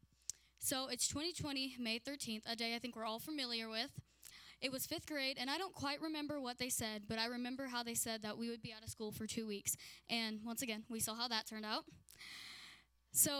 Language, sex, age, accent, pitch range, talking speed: English, female, 10-29, American, 225-275 Hz, 230 wpm